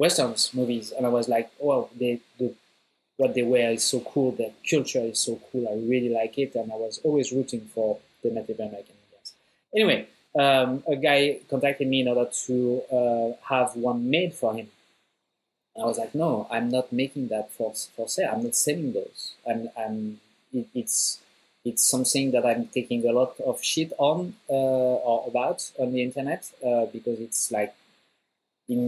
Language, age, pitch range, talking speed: English, 20-39, 115-135 Hz, 185 wpm